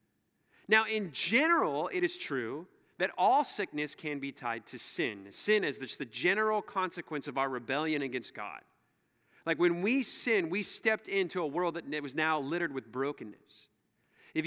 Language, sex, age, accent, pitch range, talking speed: English, male, 30-49, American, 135-195 Hz, 165 wpm